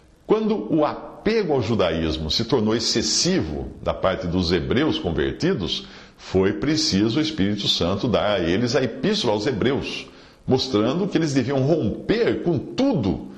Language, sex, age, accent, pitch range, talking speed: English, male, 50-69, Brazilian, 90-150 Hz, 145 wpm